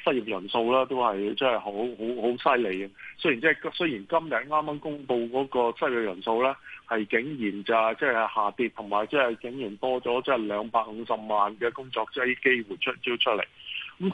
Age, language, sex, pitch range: 20-39, Chinese, male, 110-135 Hz